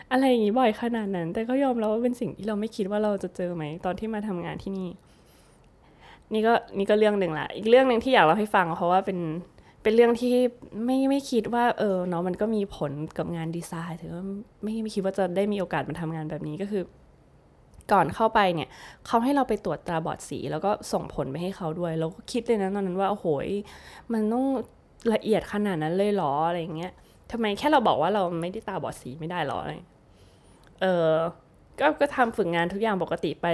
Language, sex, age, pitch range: Thai, female, 20-39, 165-220 Hz